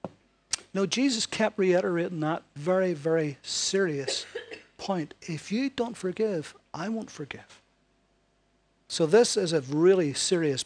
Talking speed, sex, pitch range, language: 130 wpm, male, 160-205 Hz, English